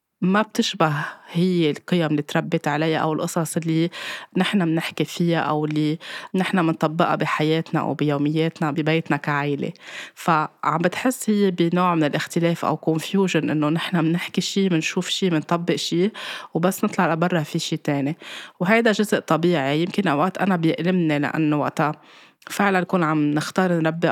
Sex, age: female, 20-39